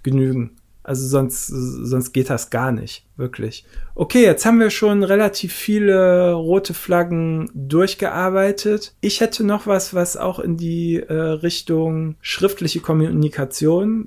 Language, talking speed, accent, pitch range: German, 130 wpm, German, 135-175 Hz